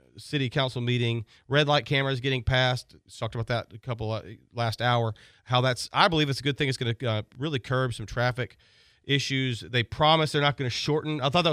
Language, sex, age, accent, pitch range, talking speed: English, male, 40-59, American, 115-145 Hz, 225 wpm